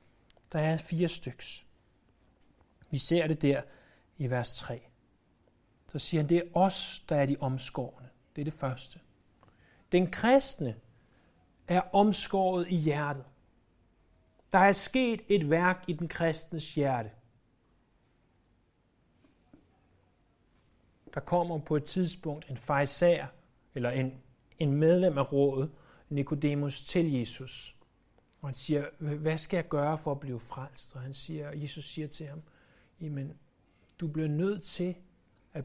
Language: Danish